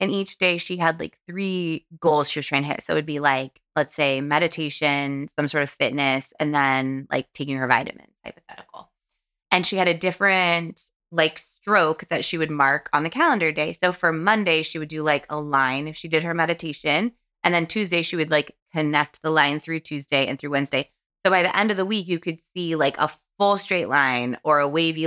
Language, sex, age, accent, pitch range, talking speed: English, female, 20-39, American, 145-170 Hz, 225 wpm